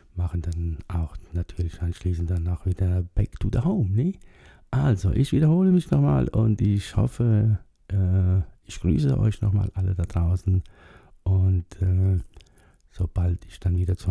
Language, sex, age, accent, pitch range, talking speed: German, male, 60-79, German, 90-100 Hz, 155 wpm